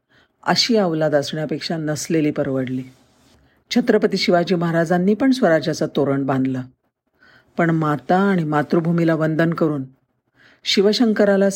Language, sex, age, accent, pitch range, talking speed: Marathi, female, 50-69, native, 145-190 Hz, 100 wpm